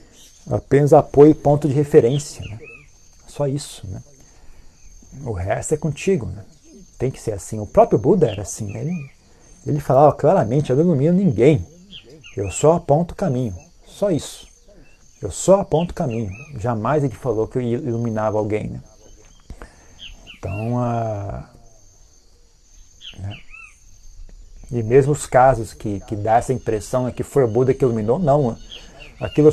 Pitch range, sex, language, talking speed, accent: 110-160 Hz, male, Portuguese, 150 wpm, Brazilian